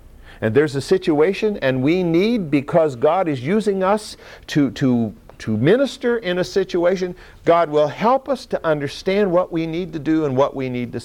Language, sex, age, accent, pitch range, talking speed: English, male, 50-69, American, 110-175 Hz, 190 wpm